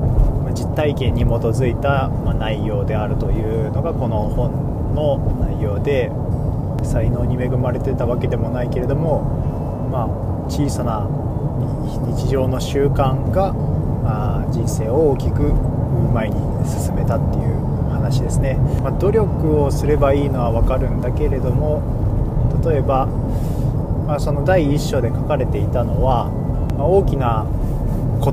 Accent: native